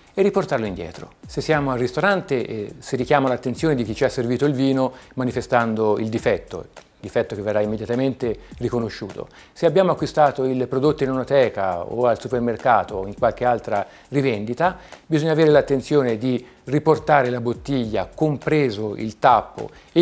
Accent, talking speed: native, 155 wpm